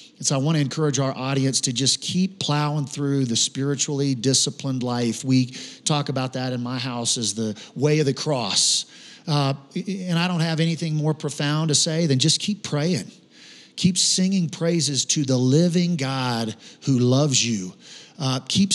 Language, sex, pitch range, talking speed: English, male, 130-165 Hz, 180 wpm